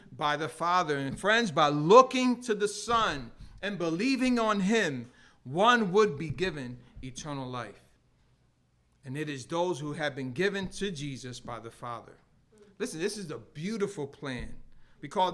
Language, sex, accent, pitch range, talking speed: English, male, American, 120-170 Hz, 160 wpm